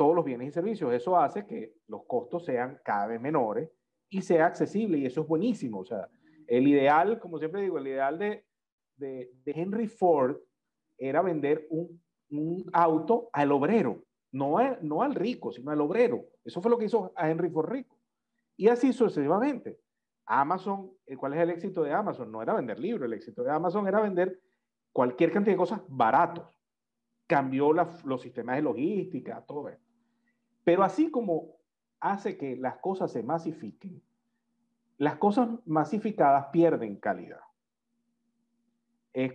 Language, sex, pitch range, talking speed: Spanish, male, 150-230 Hz, 165 wpm